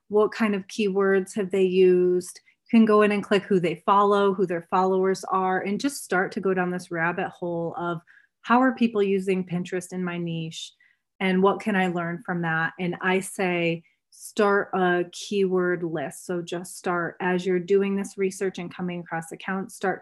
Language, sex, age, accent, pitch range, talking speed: English, female, 30-49, American, 175-200 Hz, 195 wpm